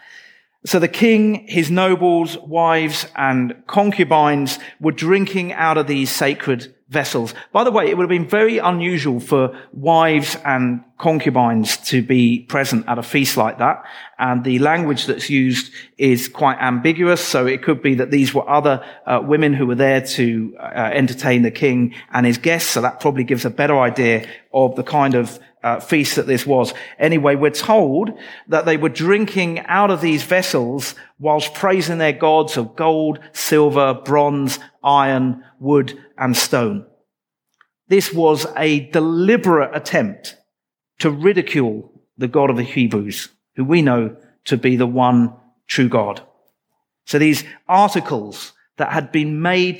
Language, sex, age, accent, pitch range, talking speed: English, male, 40-59, British, 130-165 Hz, 160 wpm